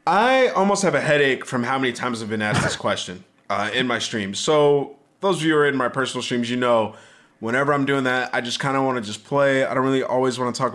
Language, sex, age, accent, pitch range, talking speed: English, male, 20-39, American, 120-155 Hz, 275 wpm